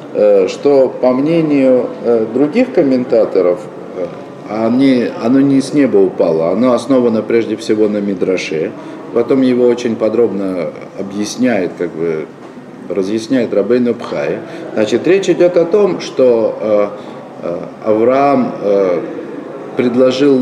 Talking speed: 100 wpm